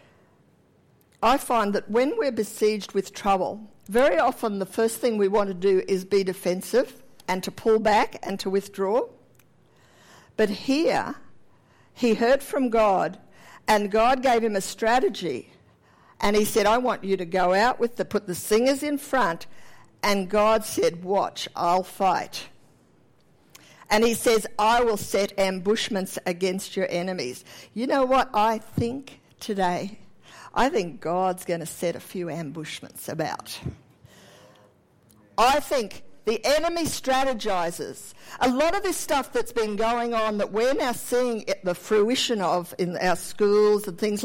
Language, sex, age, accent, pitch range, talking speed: English, female, 50-69, Australian, 190-245 Hz, 155 wpm